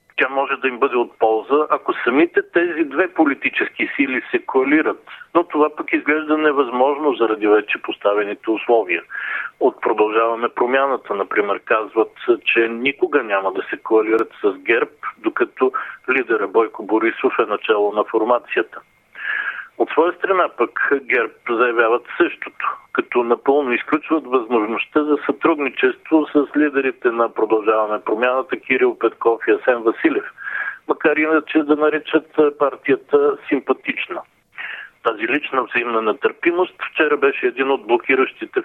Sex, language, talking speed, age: male, Bulgarian, 130 wpm, 50-69